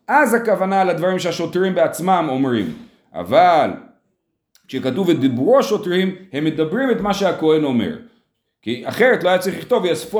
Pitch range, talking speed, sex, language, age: 130-190 Hz, 135 wpm, male, Hebrew, 40-59